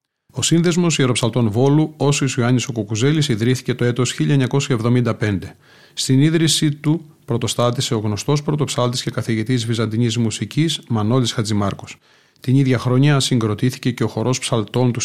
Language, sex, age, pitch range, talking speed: Greek, male, 40-59, 115-140 Hz, 135 wpm